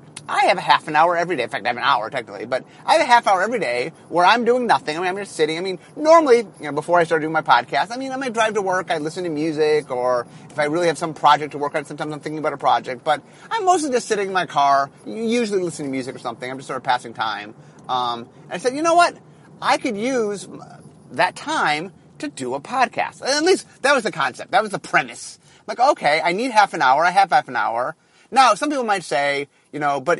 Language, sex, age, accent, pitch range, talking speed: English, male, 30-49, American, 150-230 Hz, 270 wpm